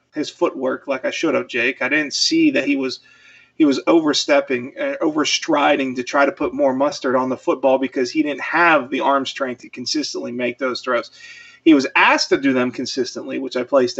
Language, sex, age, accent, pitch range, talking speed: English, male, 30-49, American, 135-180 Hz, 210 wpm